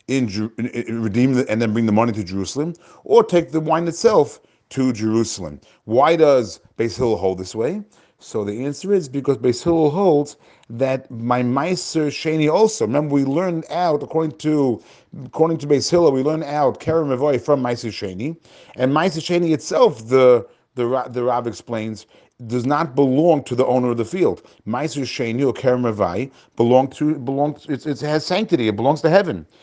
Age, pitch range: 40-59, 120-160 Hz